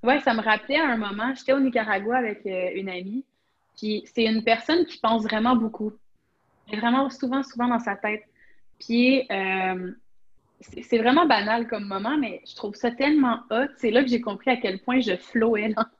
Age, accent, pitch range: 30-49, Canadian, 205-260 Hz